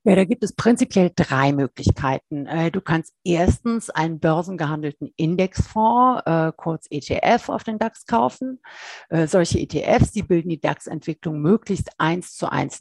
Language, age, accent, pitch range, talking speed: German, 50-69, German, 150-200 Hz, 135 wpm